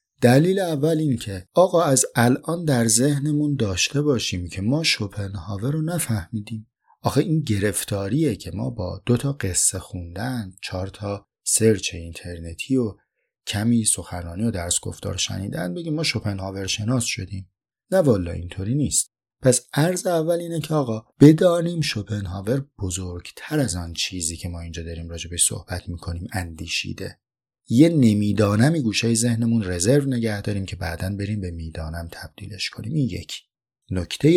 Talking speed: 145 wpm